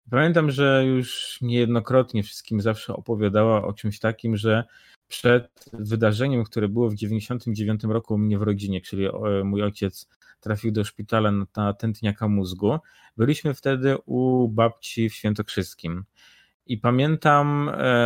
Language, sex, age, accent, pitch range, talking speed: Polish, male, 20-39, native, 110-130 Hz, 125 wpm